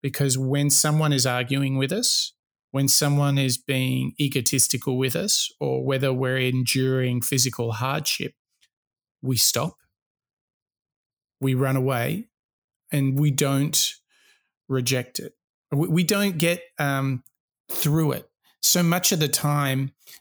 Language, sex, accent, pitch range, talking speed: English, male, Australian, 130-155 Hz, 120 wpm